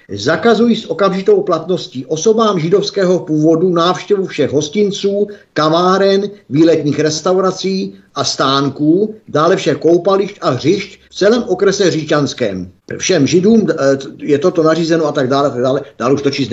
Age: 50-69